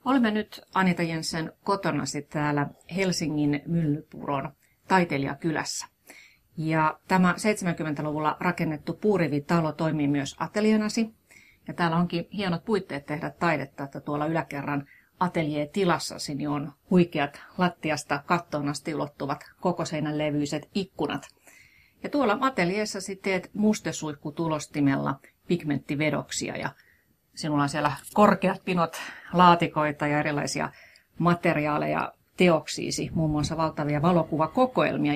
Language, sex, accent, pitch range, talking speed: Finnish, female, native, 150-190 Hz, 100 wpm